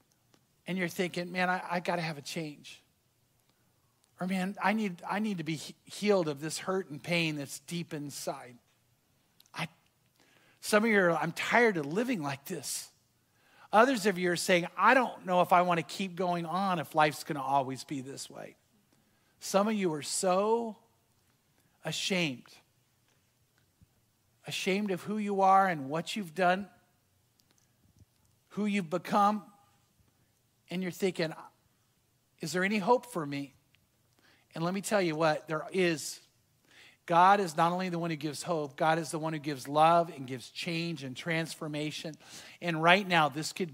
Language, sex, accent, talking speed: English, male, American, 160 wpm